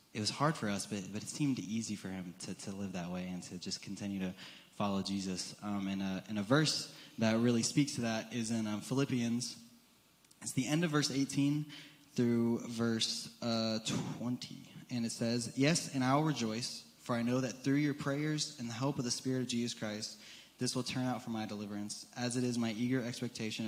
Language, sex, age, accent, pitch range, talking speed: English, male, 20-39, American, 100-125 Hz, 220 wpm